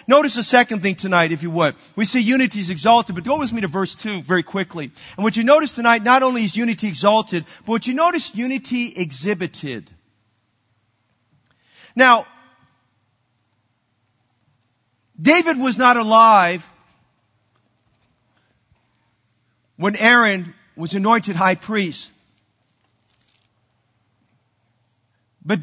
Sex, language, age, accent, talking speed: male, English, 40-59, American, 115 wpm